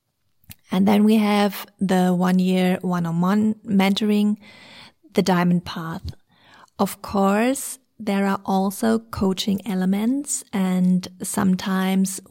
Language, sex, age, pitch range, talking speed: English, female, 30-49, 190-220 Hz, 95 wpm